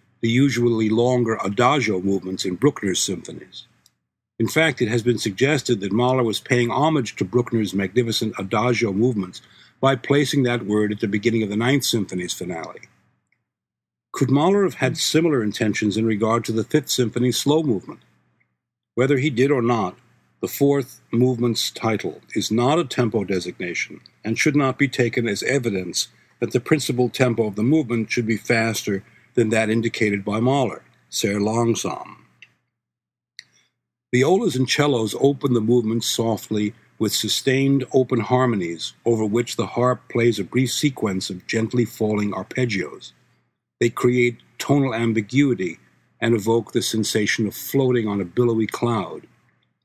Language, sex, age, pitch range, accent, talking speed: English, male, 60-79, 110-130 Hz, American, 150 wpm